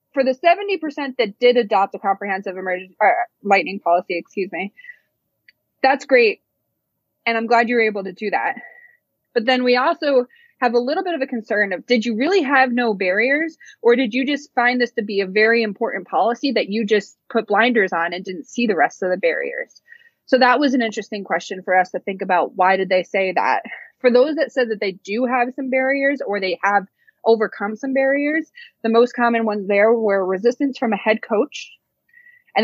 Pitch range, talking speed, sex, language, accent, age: 205-275 Hz, 210 wpm, female, English, American, 20-39